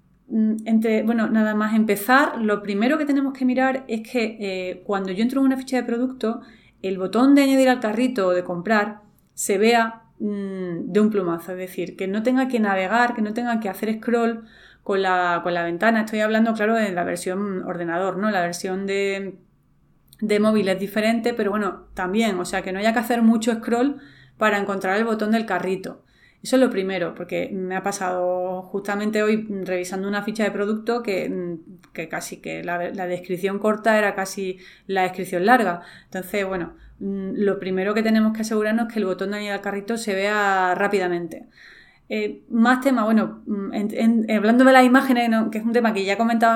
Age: 30-49